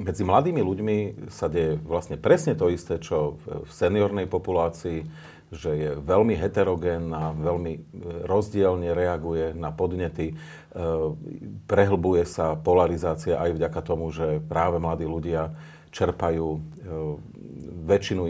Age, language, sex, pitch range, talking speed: 40-59, Slovak, male, 80-95 Hz, 110 wpm